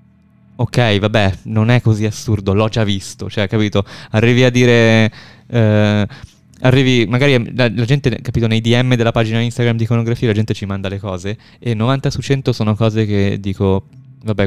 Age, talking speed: 20-39, 180 wpm